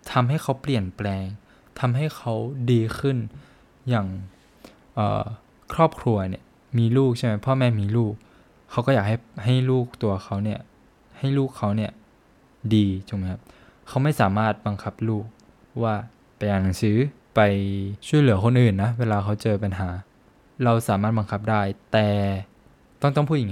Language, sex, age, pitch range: Thai, male, 20-39, 100-125 Hz